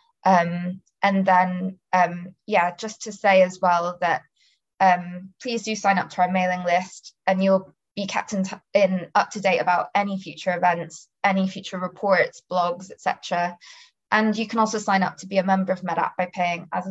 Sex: female